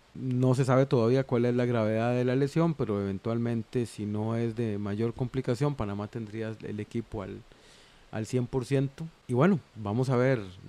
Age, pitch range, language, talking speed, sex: 30-49, 110-135 Hz, Spanish, 175 wpm, male